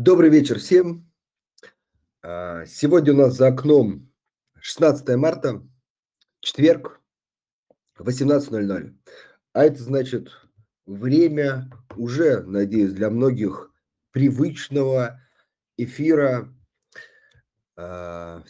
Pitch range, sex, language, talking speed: 100-140 Hz, male, Russian, 75 wpm